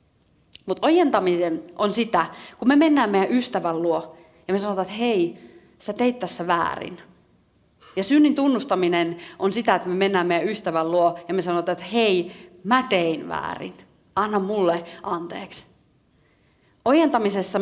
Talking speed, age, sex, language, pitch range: 145 wpm, 30-49, female, Finnish, 170-215 Hz